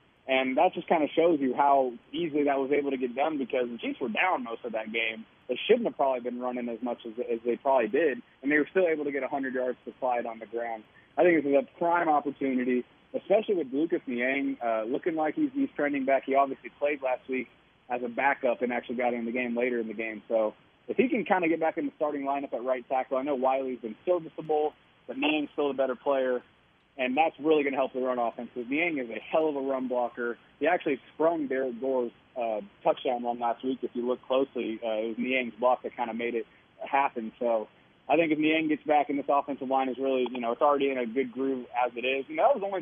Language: English